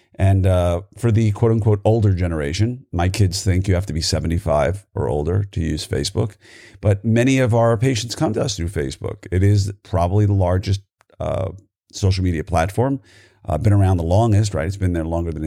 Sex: male